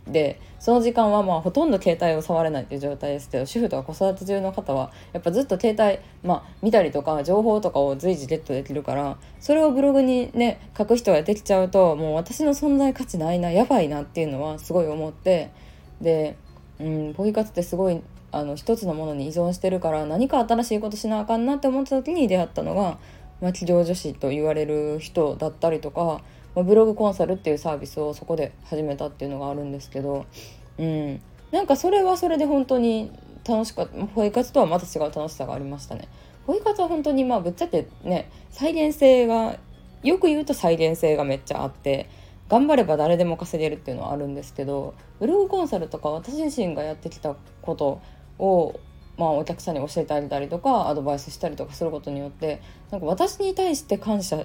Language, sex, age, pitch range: Japanese, female, 20-39, 150-230 Hz